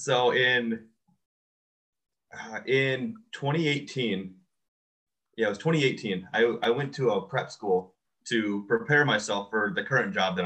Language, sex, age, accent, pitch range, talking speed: English, male, 30-49, American, 100-140 Hz, 130 wpm